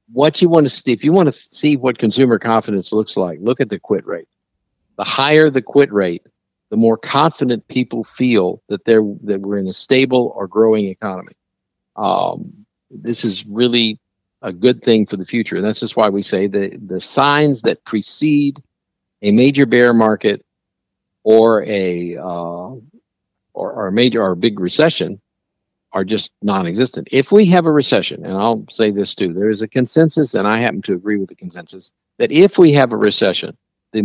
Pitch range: 95-130 Hz